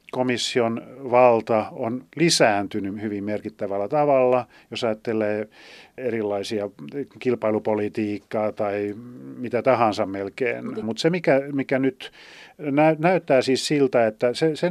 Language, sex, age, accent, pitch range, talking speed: Finnish, male, 40-59, native, 110-135 Hz, 105 wpm